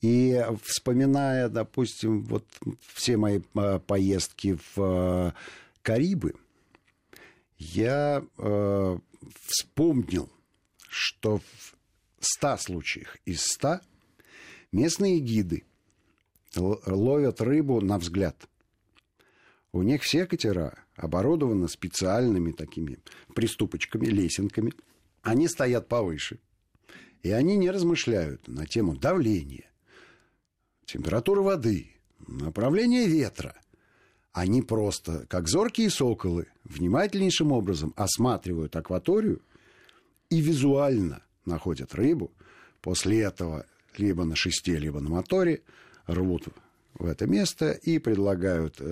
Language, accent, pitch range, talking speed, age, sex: Russian, native, 90-125 Hz, 95 wpm, 50-69, male